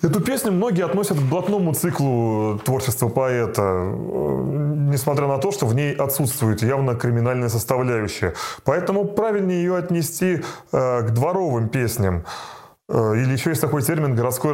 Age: 30-49